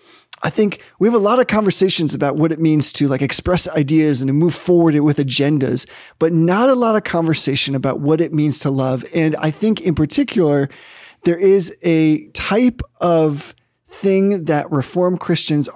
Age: 20-39